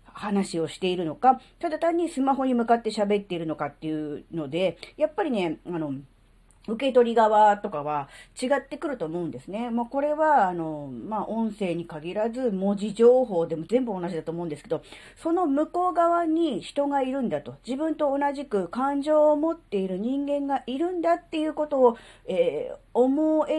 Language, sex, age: Japanese, female, 40-59